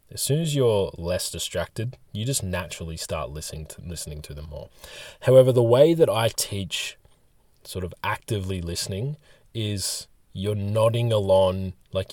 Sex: male